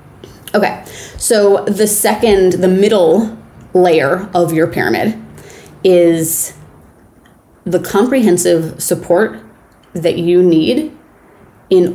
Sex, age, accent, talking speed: female, 20-39, American, 90 wpm